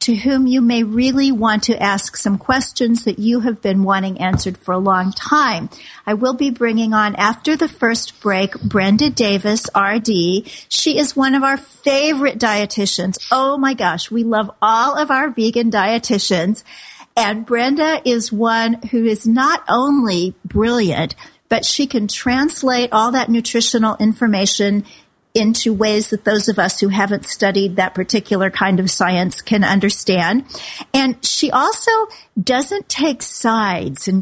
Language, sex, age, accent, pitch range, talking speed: English, female, 50-69, American, 205-265 Hz, 155 wpm